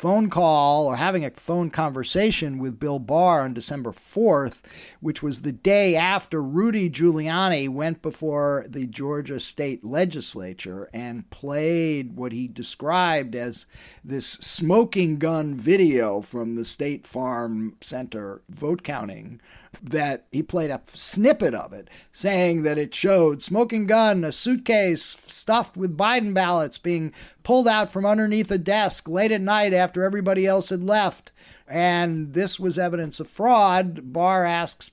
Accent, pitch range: American, 140-185 Hz